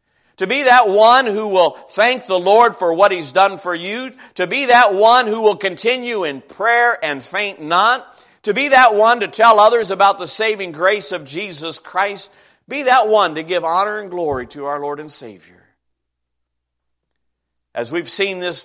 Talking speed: 185 wpm